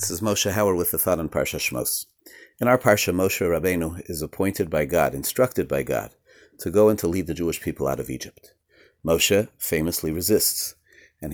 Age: 40-59